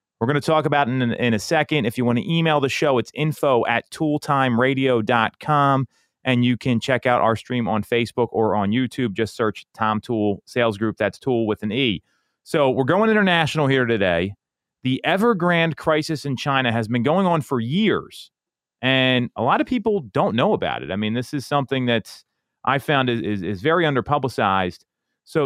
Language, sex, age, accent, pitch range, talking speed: English, male, 30-49, American, 115-150 Hz, 200 wpm